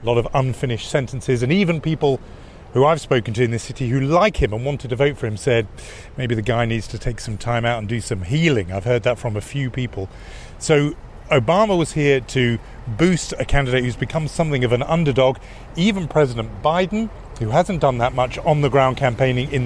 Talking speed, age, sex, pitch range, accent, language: 220 wpm, 40-59, male, 120-155 Hz, British, English